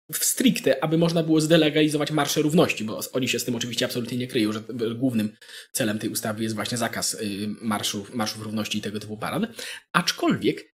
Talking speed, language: 180 wpm, Polish